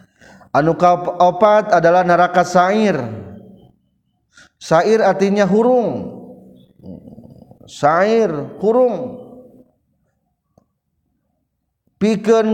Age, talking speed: 40-59, 55 wpm